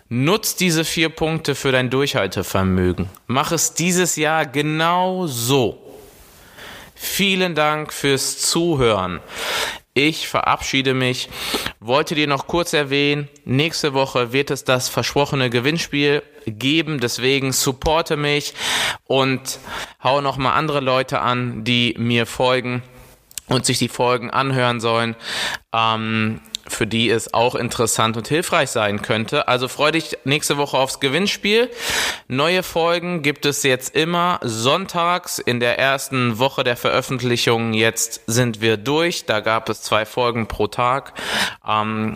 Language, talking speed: German, 135 wpm